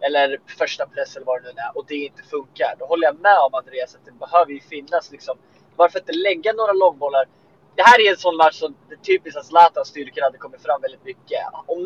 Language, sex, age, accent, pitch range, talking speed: Swedish, male, 20-39, native, 150-240 Hz, 235 wpm